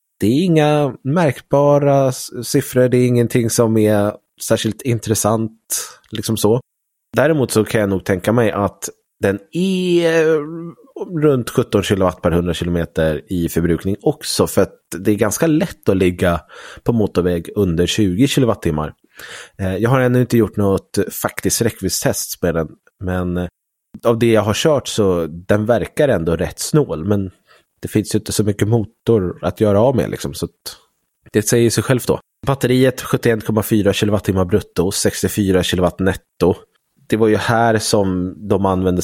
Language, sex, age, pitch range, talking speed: Swedish, male, 30-49, 90-120 Hz, 155 wpm